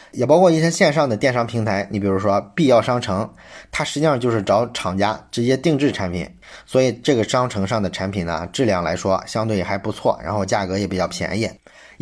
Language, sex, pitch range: Chinese, male, 100-145 Hz